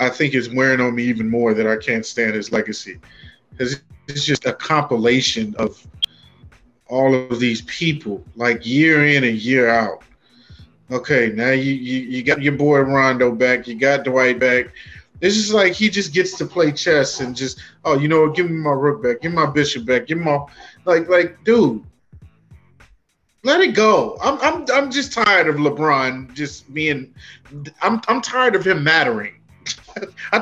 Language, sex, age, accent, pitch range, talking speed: English, male, 20-39, American, 125-155 Hz, 185 wpm